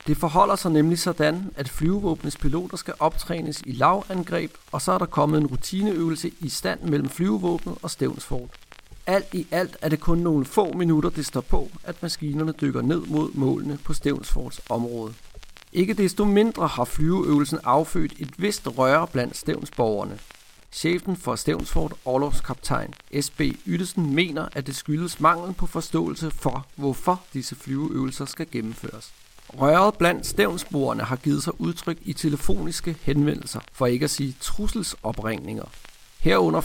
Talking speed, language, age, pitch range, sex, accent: 150 wpm, Danish, 40-59, 140-170 Hz, male, native